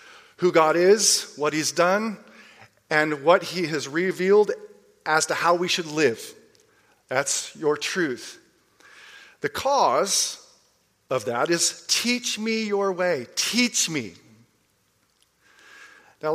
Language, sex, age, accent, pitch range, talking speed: English, male, 40-59, American, 145-245 Hz, 115 wpm